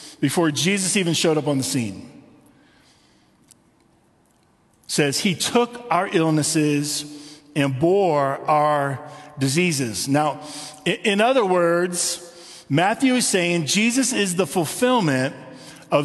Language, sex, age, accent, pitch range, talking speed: English, male, 40-59, American, 150-210 Hz, 110 wpm